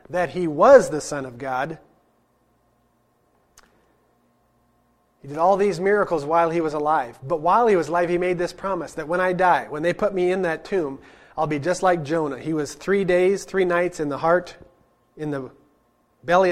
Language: English